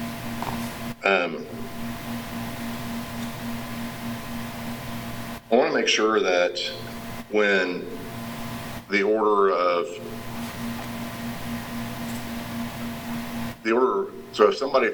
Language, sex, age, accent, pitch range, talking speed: English, male, 50-69, American, 110-115 Hz, 65 wpm